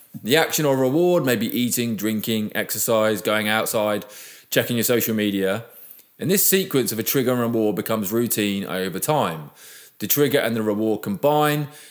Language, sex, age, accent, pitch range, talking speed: English, male, 20-39, British, 105-145 Hz, 165 wpm